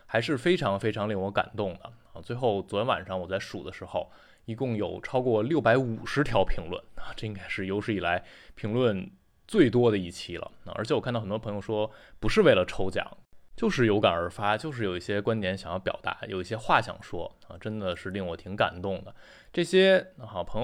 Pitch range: 95-115 Hz